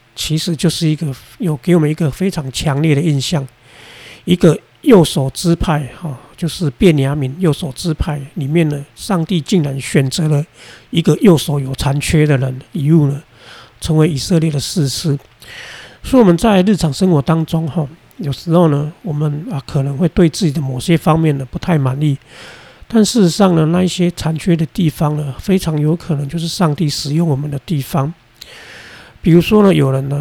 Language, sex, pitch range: Chinese, male, 140-170 Hz